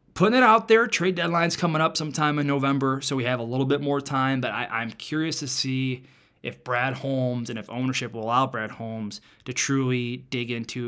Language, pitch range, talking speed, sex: English, 115-140 Hz, 215 wpm, male